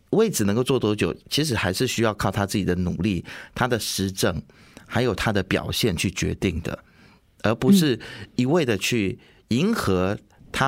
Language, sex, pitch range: Chinese, male, 95-135 Hz